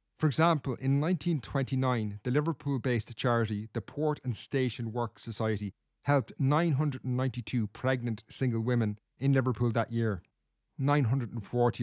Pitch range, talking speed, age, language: 110-140 Hz, 115 wpm, 30-49, English